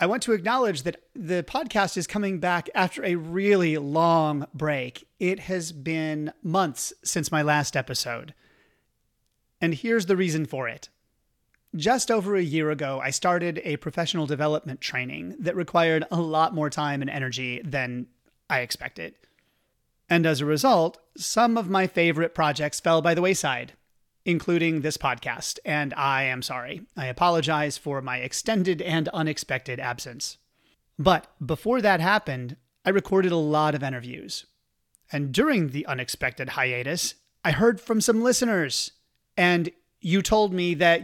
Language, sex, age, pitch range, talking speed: English, male, 30-49, 145-180 Hz, 150 wpm